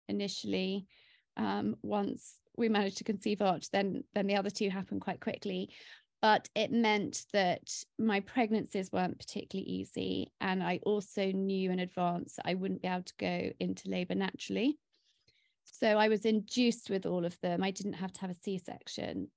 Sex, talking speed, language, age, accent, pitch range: female, 170 wpm, English, 30-49, British, 190-230 Hz